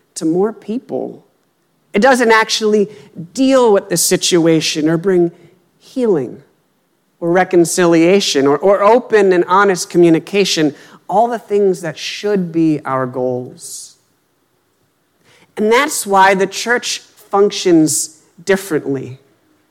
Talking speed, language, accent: 110 wpm, English, American